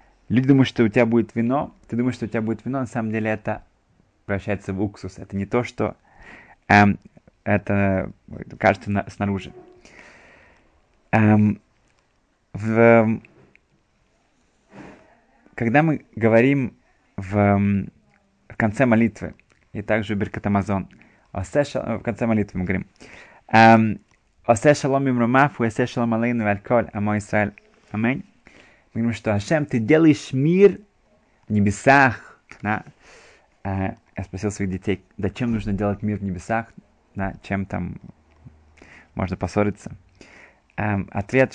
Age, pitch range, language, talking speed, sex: 20-39, 100-115 Hz, Russian, 105 wpm, male